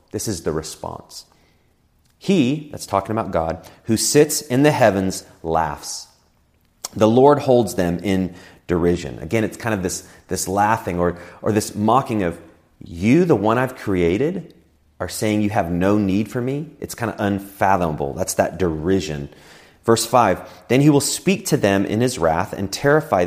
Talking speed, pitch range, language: 170 wpm, 85-120 Hz, English